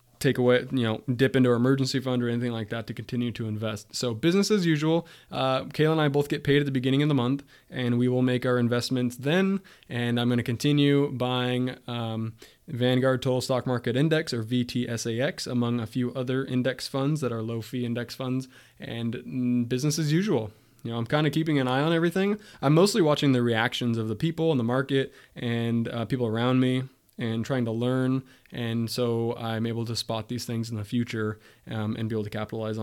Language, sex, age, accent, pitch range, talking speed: English, male, 20-39, American, 115-135 Hz, 215 wpm